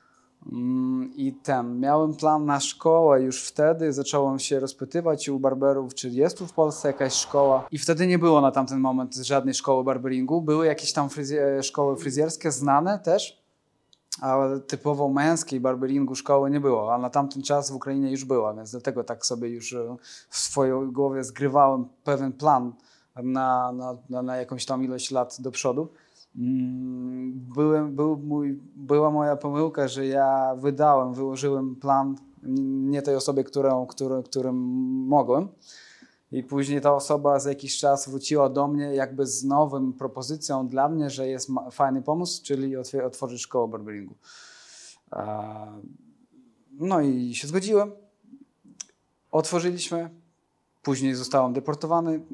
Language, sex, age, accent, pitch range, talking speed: Polish, male, 20-39, native, 130-150 Hz, 140 wpm